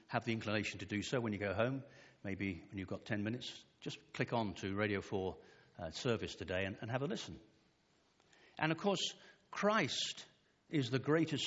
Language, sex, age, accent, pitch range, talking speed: English, male, 50-69, British, 110-160 Hz, 195 wpm